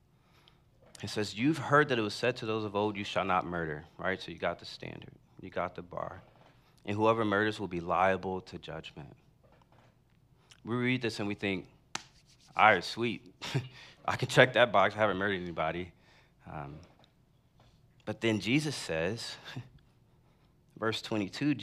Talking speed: 165 wpm